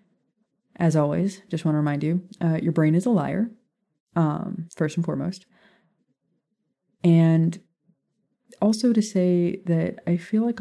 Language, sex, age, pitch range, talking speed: English, female, 20-39, 155-210 Hz, 140 wpm